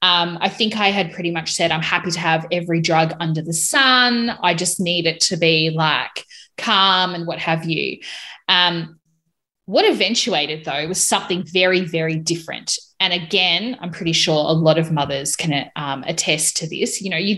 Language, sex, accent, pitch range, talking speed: English, female, Australian, 160-195 Hz, 190 wpm